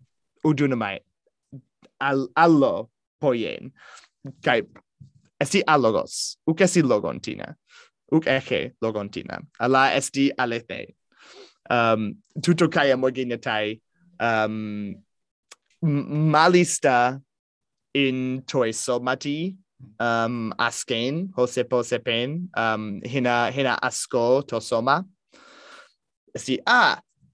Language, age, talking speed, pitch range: Greek, 20-39, 70 wpm, 115-145 Hz